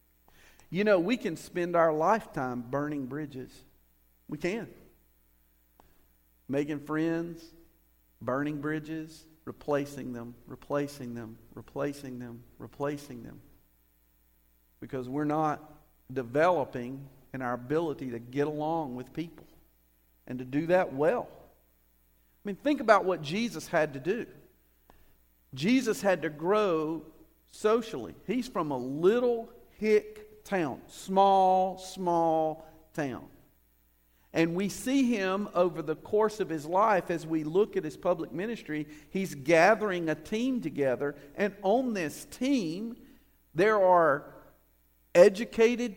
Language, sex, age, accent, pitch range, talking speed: English, male, 50-69, American, 130-215 Hz, 120 wpm